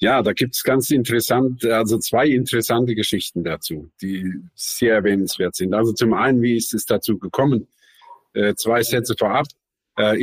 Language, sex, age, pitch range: German, male, 50-69, 110-135 Hz